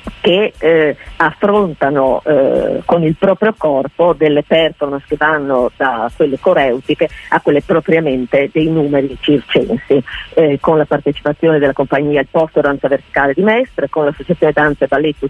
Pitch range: 145-195 Hz